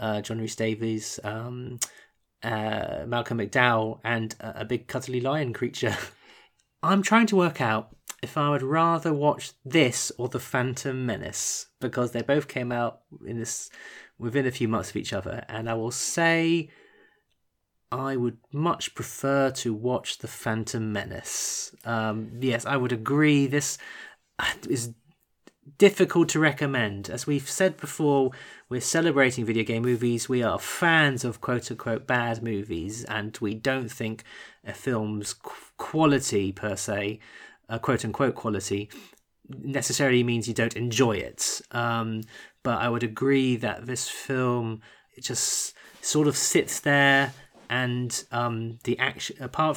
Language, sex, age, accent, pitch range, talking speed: English, male, 20-39, British, 115-140 Hz, 145 wpm